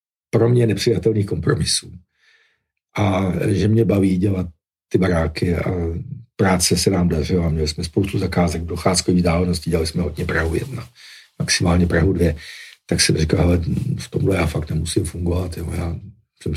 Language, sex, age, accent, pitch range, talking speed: Czech, male, 50-69, native, 85-100 Hz, 155 wpm